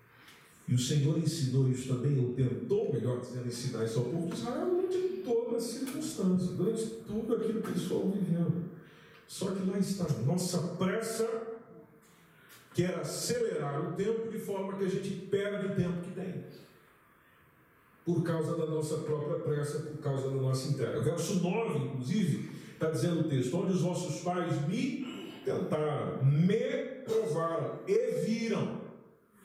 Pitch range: 150-215 Hz